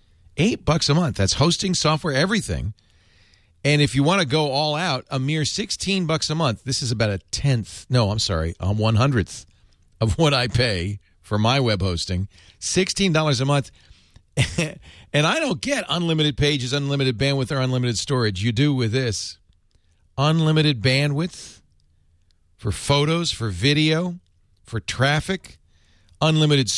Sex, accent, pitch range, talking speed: male, American, 90-135 Hz, 150 wpm